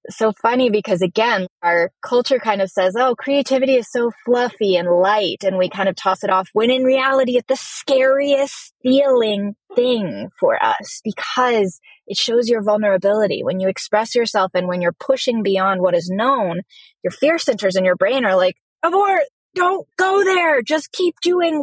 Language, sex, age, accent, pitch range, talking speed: English, female, 20-39, American, 190-275 Hz, 180 wpm